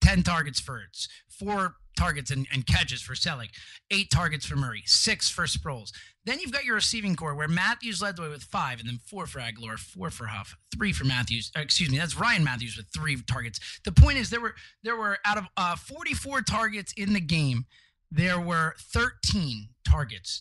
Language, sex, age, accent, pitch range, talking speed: English, male, 30-49, American, 135-210 Hz, 200 wpm